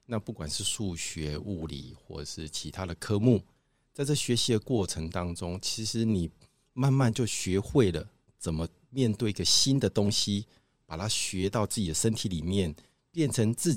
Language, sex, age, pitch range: Chinese, male, 50-69, 85-120 Hz